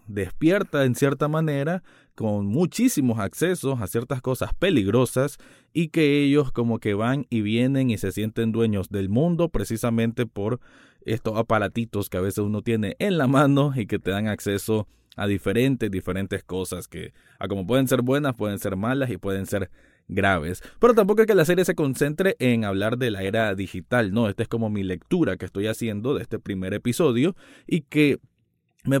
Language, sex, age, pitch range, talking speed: Spanish, male, 20-39, 100-135 Hz, 185 wpm